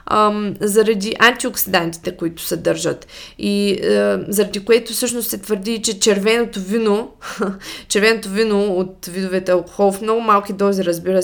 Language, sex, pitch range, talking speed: Bulgarian, female, 185-225 Hz, 140 wpm